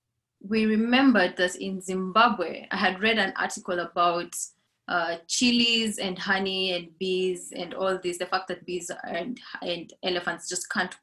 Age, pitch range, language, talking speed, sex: 20-39, 180-220 Hz, English, 160 wpm, female